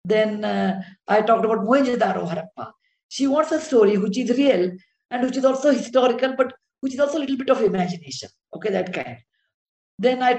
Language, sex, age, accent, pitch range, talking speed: English, female, 50-69, Indian, 205-260 Hz, 190 wpm